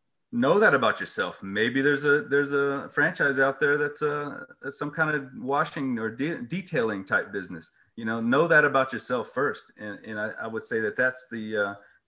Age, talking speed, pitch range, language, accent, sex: 30-49, 200 wpm, 115-150 Hz, English, American, male